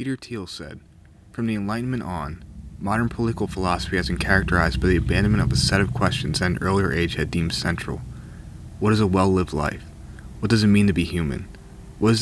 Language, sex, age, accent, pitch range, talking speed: English, male, 30-49, American, 85-105 Hz, 205 wpm